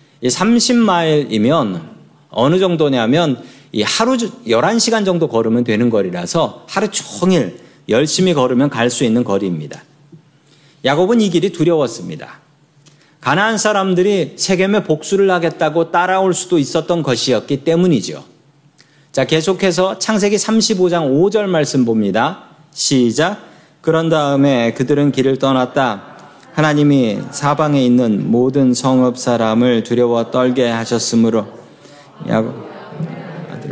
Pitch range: 125-185 Hz